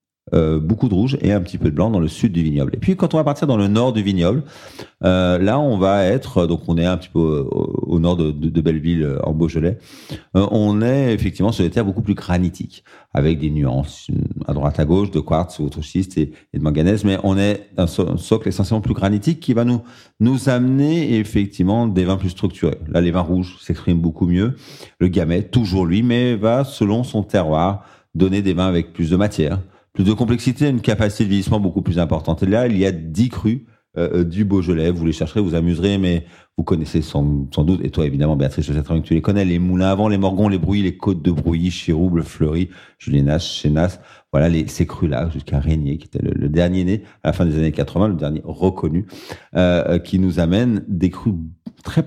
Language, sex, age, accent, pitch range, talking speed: French, male, 40-59, French, 85-105 Hz, 225 wpm